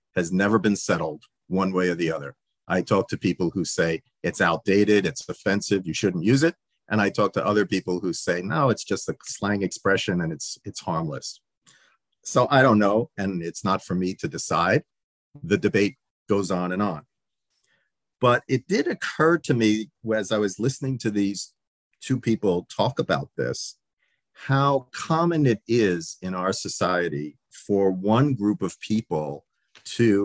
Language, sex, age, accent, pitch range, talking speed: English, male, 50-69, American, 95-125 Hz, 175 wpm